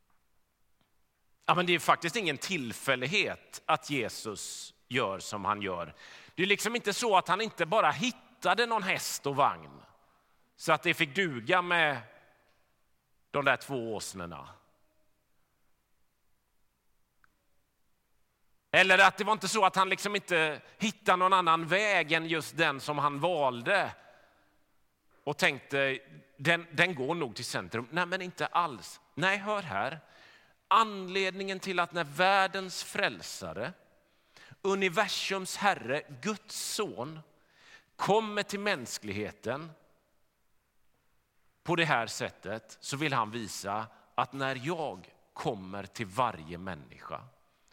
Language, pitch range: Swedish, 125-190 Hz